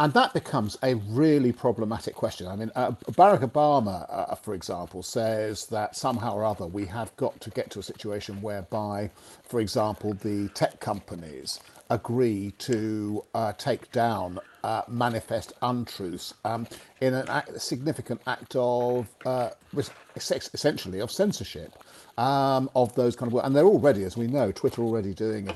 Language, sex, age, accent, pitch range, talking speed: English, male, 50-69, British, 105-145 Hz, 155 wpm